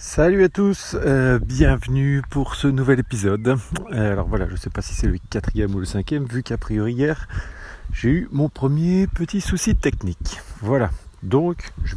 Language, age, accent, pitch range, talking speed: English, 40-59, French, 95-130 Hz, 180 wpm